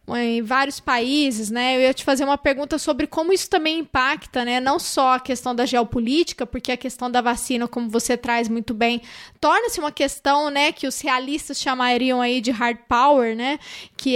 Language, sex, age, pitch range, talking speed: Portuguese, female, 20-39, 255-310 Hz, 195 wpm